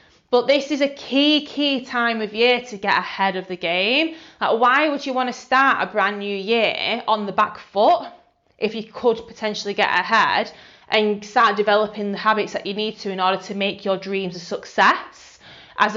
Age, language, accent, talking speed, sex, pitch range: 20-39, English, British, 200 wpm, female, 205-265 Hz